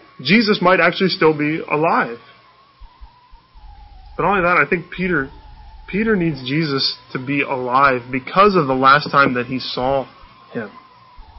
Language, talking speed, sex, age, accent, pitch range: English, 140 wpm, male, 20-39, American, 120-165 Hz